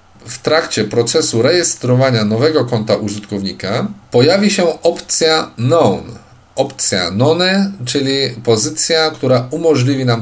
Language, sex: Polish, male